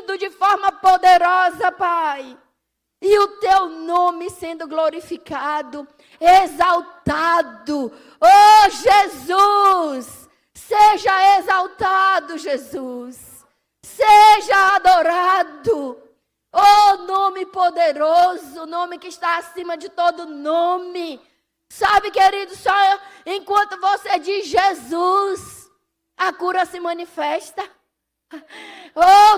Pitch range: 345-400 Hz